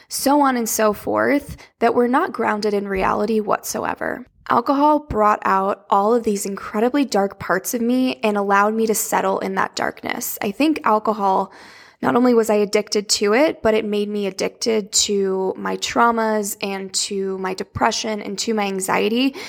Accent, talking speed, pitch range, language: American, 175 wpm, 205-230 Hz, English